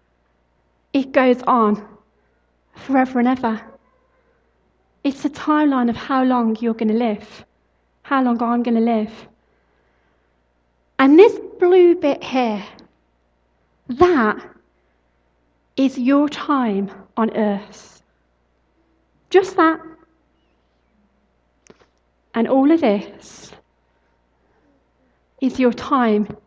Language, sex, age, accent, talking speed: English, female, 40-59, British, 95 wpm